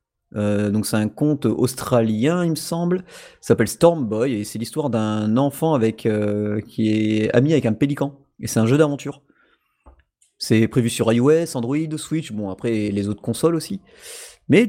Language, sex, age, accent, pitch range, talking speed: French, male, 30-49, French, 110-150 Hz, 175 wpm